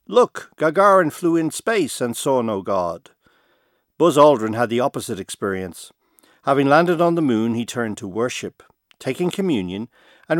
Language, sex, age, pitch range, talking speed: English, male, 50-69, 115-170 Hz, 155 wpm